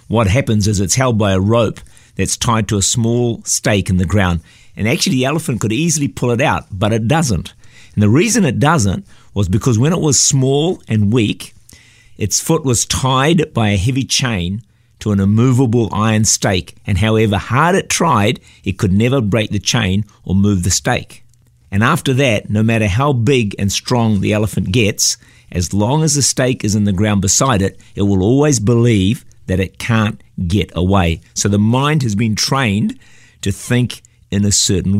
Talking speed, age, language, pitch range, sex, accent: 195 wpm, 50-69, English, 100-125 Hz, male, Australian